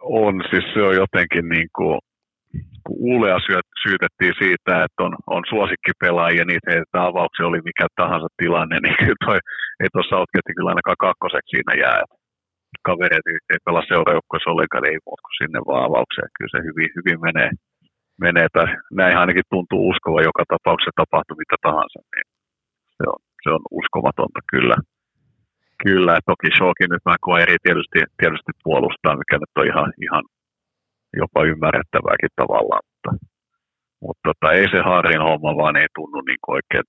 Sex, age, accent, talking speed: male, 50-69, native, 150 wpm